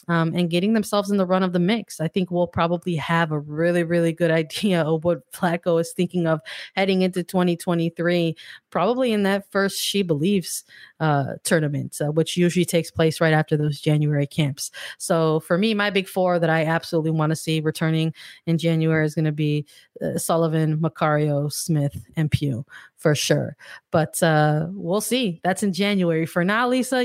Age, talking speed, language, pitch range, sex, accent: 20-39, 185 wpm, English, 165-195 Hz, female, American